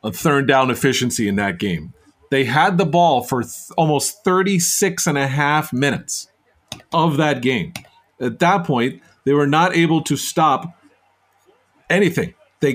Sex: male